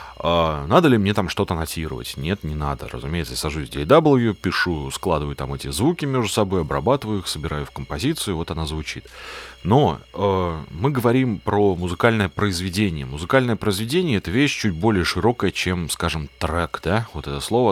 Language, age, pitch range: Russian, 30-49, 75-115 Hz